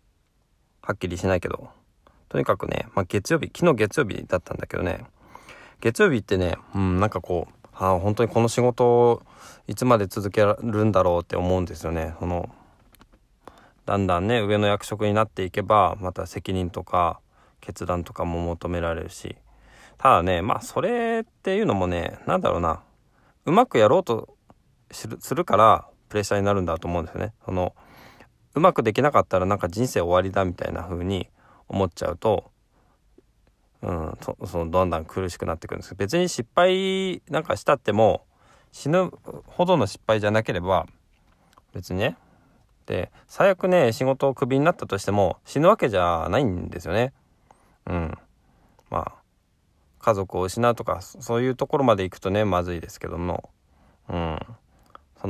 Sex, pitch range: male, 90-120 Hz